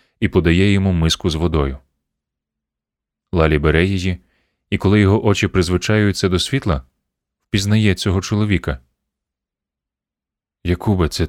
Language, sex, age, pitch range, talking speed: Ukrainian, male, 30-49, 75-95 Hz, 110 wpm